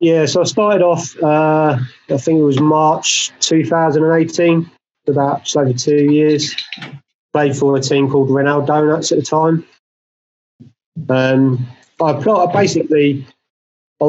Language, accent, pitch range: English, British, 125-155 Hz